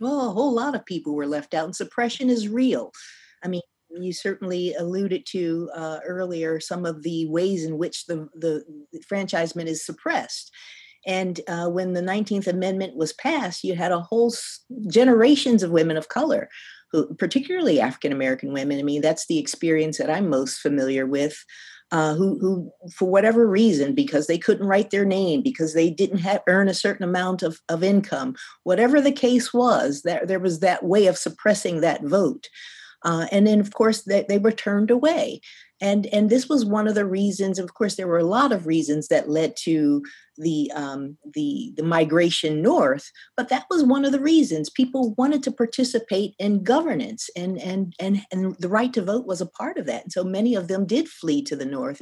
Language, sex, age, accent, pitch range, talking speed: English, female, 40-59, American, 165-225 Hz, 195 wpm